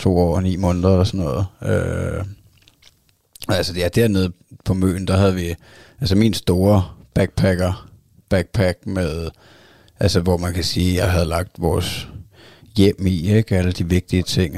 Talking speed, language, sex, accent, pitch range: 160 wpm, Danish, male, native, 90-105 Hz